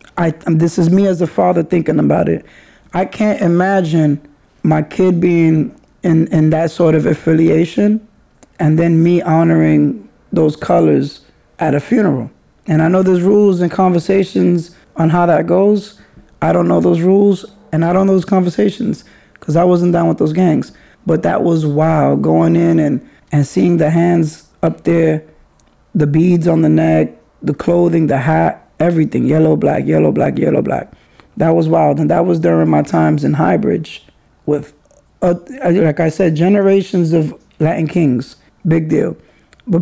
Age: 20-39